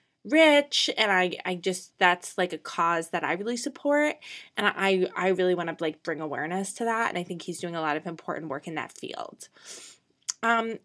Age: 20-39